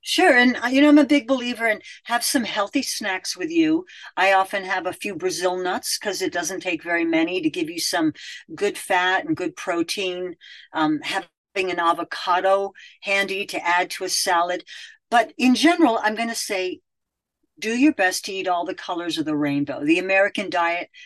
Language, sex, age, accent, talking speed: English, female, 50-69, American, 195 wpm